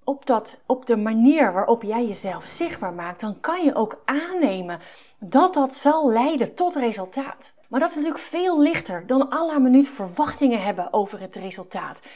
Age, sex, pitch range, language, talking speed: 40-59, female, 210-280 Hz, Dutch, 175 wpm